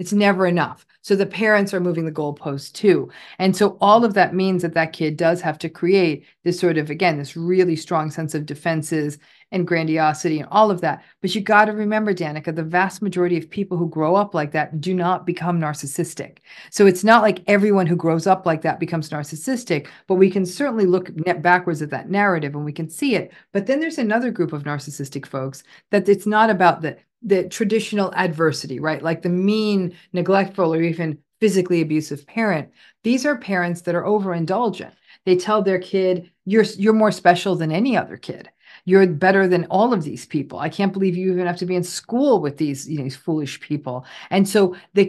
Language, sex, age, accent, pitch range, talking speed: English, female, 40-59, American, 160-200 Hz, 205 wpm